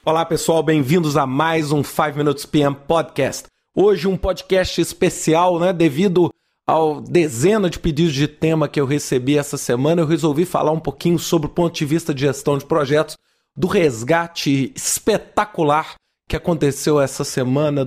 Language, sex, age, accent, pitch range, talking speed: Portuguese, male, 40-59, Brazilian, 145-185 Hz, 160 wpm